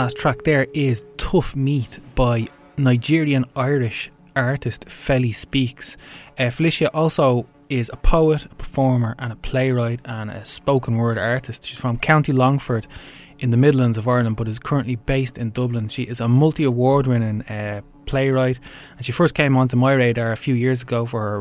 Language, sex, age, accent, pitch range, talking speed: French, male, 20-39, Irish, 120-140 Hz, 175 wpm